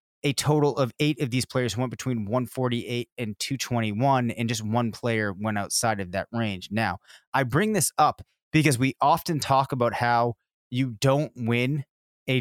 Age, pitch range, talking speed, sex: 20-39, 115-140 Hz, 175 wpm, male